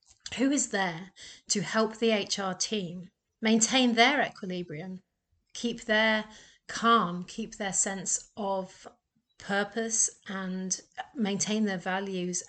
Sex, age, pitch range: female, 40-59, 185-230 Hz